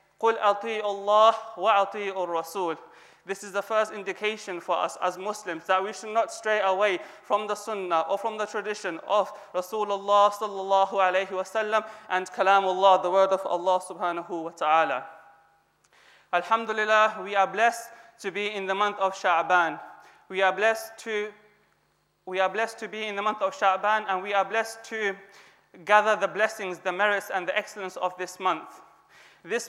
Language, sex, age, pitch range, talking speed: English, male, 20-39, 190-220 Hz, 160 wpm